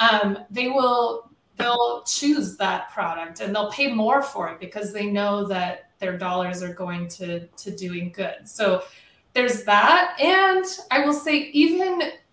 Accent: American